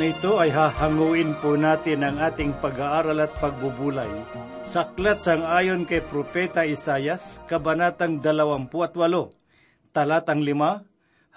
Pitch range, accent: 155-185 Hz, native